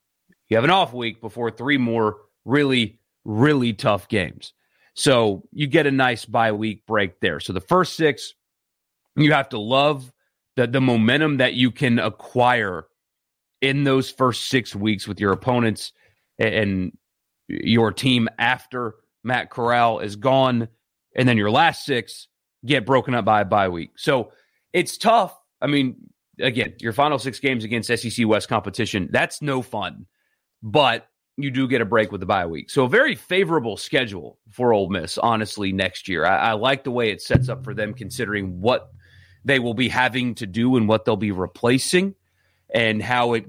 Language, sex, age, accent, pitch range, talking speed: English, male, 30-49, American, 105-130 Hz, 175 wpm